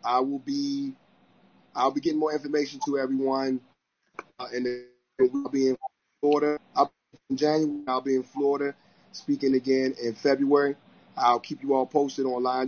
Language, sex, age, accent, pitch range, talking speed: English, male, 30-49, American, 120-145 Hz, 165 wpm